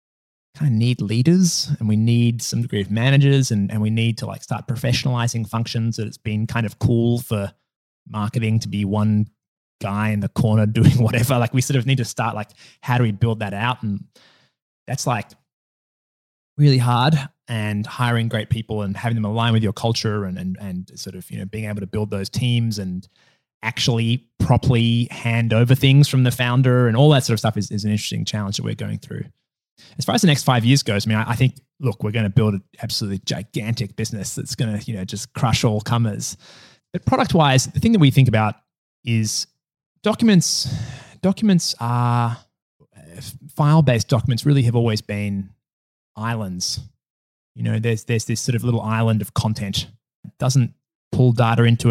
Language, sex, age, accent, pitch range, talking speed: English, male, 20-39, Australian, 110-130 Hz, 200 wpm